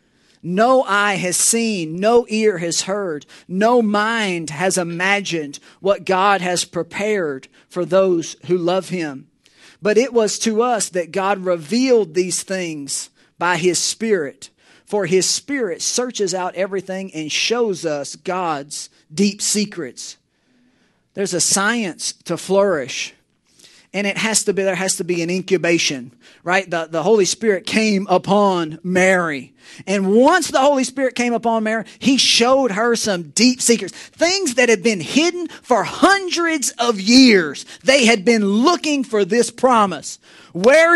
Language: English